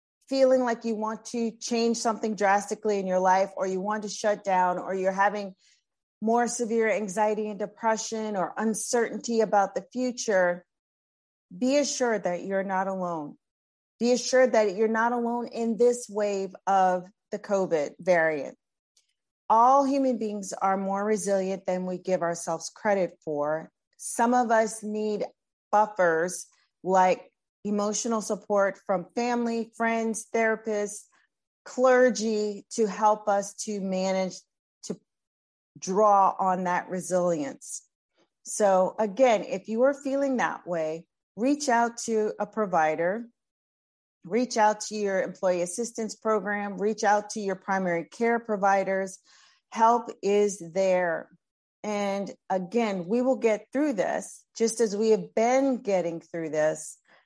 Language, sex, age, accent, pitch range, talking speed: English, female, 40-59, American, 185-230 Hz, 135 wpm